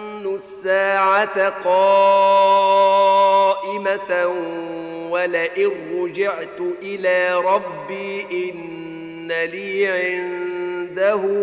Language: Gujarati